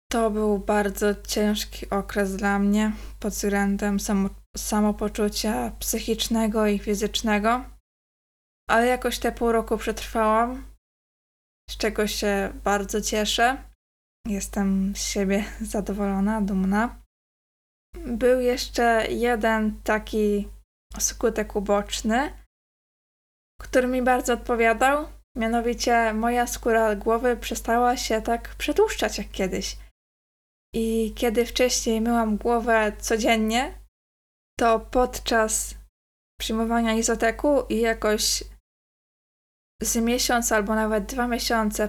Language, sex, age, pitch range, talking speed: Polish, female, 20-39, 205-235 Hz, 95 wpm